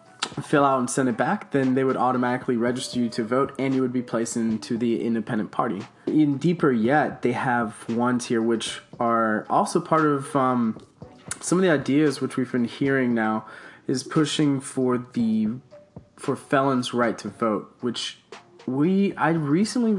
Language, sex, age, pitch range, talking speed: English, male, 20-39, 120-140 Hz, 175 wpm